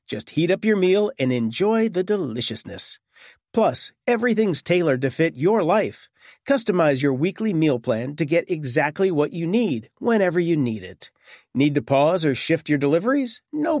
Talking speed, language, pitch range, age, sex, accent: 170 wpm, English, 140-195 Hz, 40-59, male, American